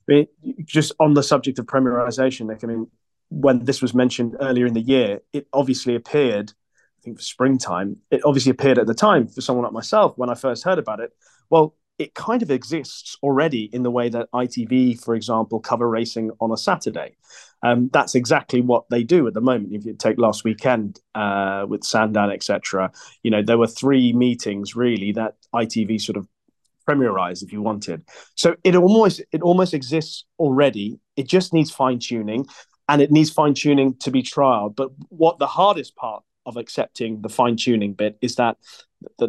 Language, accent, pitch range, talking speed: English, British, 110-135 Hz, 190 wpm